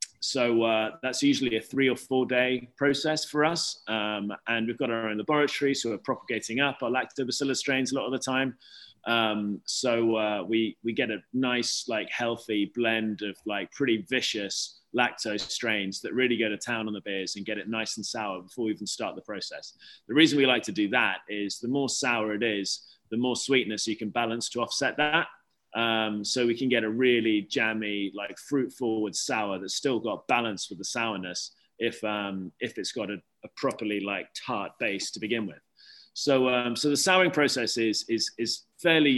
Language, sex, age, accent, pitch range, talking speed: English, male, 20-39, British, 105-130 Hz, 205 wpm